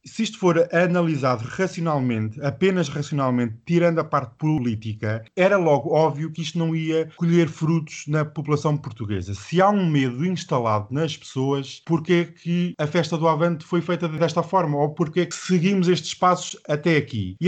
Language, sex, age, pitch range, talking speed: Portuguese, male, 20-39, 135-175 Hz, 175 wpm